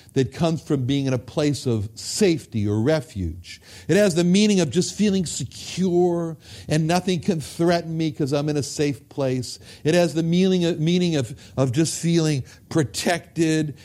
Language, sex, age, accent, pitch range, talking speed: English, male, 60-79, American, 120-180 Hz, 180 wpm